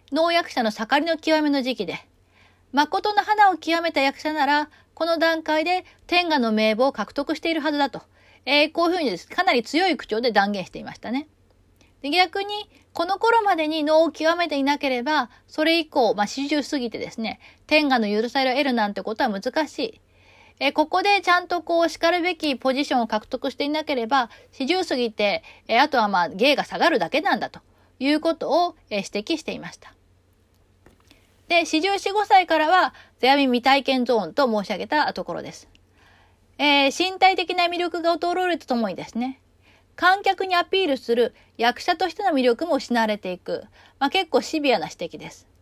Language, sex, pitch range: Japanese, female, 240-345 Hz